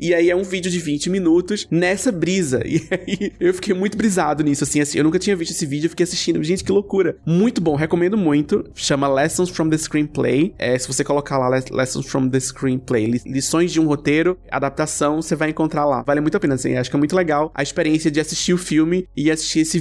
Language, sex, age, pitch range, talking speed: Portuguese, male, 20-39, 145-175 Hz, 235 wpm